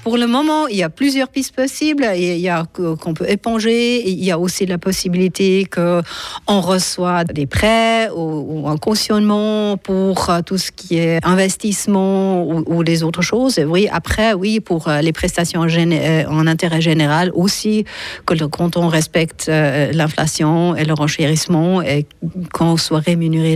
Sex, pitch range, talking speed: female, 165-205 Hz, 150 wpm